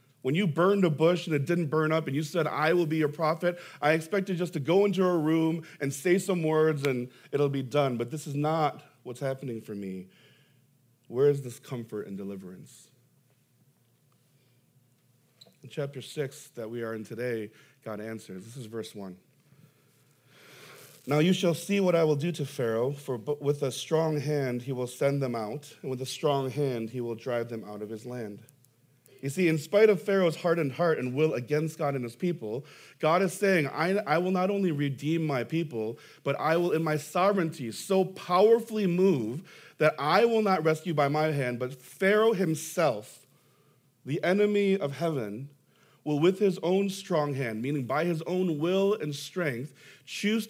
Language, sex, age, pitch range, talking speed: English, male, 40-59, 130-170 Hz, 190 wpm